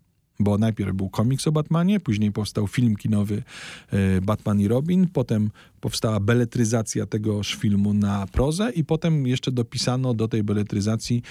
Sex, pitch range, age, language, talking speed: male, 100-120 Hz, 40-59, Polish, 145 wpm